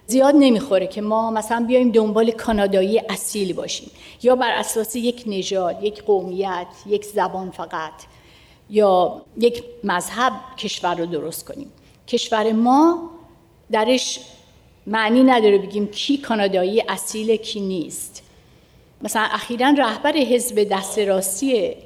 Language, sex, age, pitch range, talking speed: Persian, female, 50-69, 200-260 Hz, 120 wpm